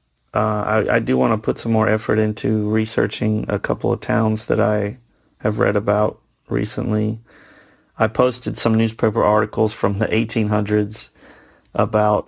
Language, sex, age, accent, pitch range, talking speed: English, male, 30-49, American, 105-120 Hz, 150 wpm